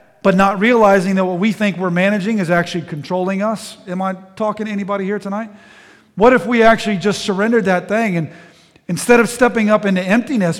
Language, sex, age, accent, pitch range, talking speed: English, male, 40-59, American, 175-210 Hz, 200 wpm